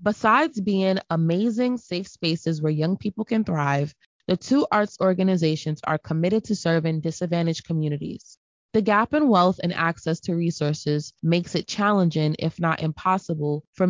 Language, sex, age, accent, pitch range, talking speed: English, female, 20-39, American, 160-205 Hz, 150 wpm